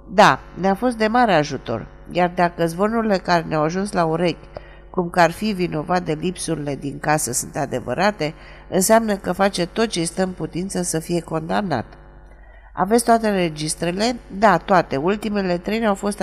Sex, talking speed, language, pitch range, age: female, 165 wpm, Romanian, 155-200 Hz, 50-69